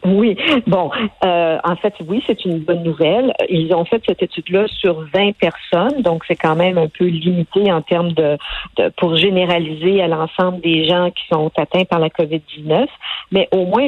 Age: 50-69